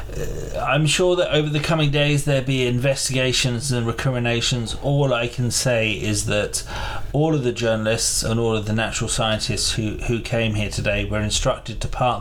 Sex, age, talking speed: male, 30-49, 180 wpm